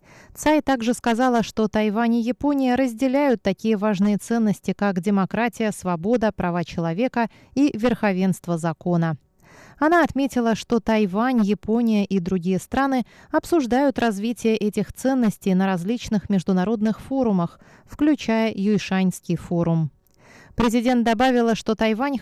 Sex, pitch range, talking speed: female, 185-235 Hz, 115 wpm